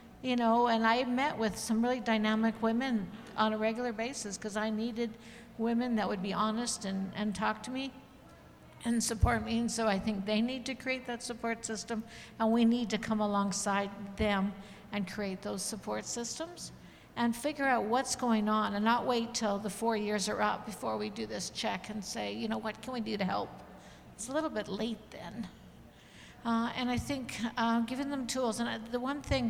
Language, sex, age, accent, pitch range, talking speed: English, female, 60-79, American, 205-235 Hz, 205 wpm